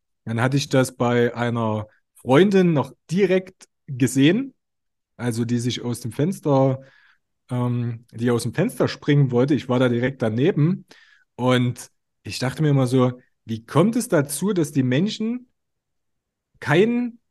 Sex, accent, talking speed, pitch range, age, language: male, German, 145 wpm, 120-180 Hz, 30-49, German